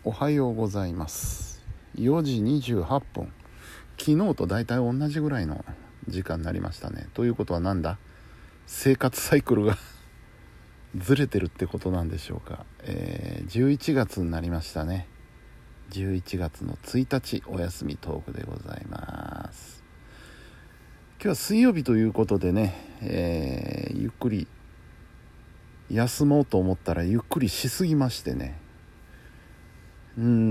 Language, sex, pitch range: Japanese, male, 90-125 Hz